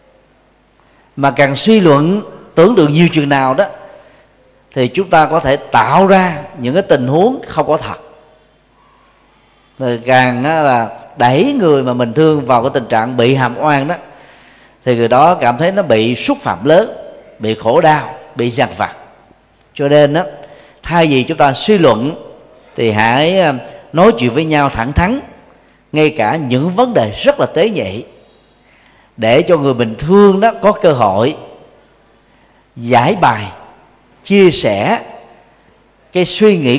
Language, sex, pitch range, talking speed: Vietnamese, male, 125-180 Hz, 160 wpm